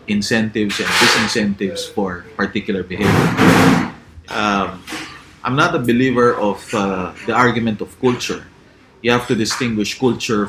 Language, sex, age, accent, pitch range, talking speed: English, male, 30-49, Filipino, 95-115 Hz, 125 wpm